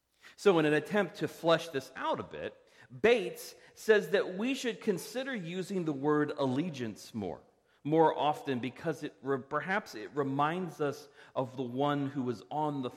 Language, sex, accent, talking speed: English, male, American, 170 wpm